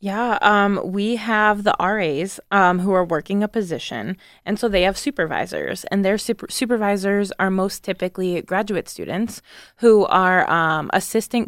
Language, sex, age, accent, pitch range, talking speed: English, female, 20-39, American, 180-210 Hz, 155 wpm